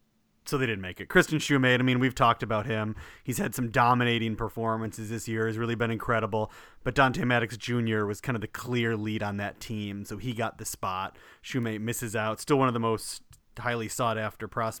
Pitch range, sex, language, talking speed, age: 110-130 Hz, male, English, 210 wpm, 30-49